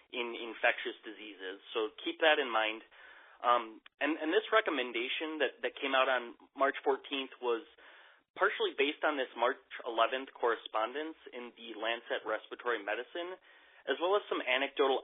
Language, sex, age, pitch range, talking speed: English, male, 30-49, 115-150 Hz, 150 wpm